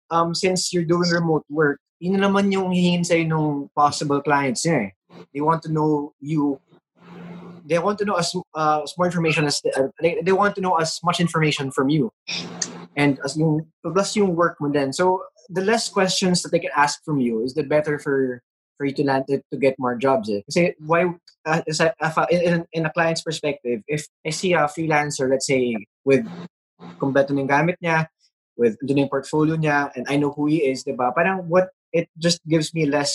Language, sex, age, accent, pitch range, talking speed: English, male, 20-39, Filipino, 140-170 Hz, 205 wpm